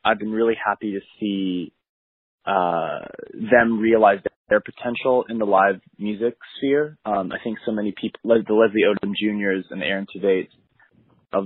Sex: male